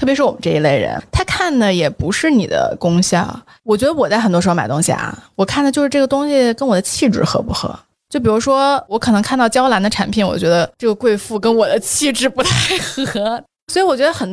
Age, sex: 20-39, female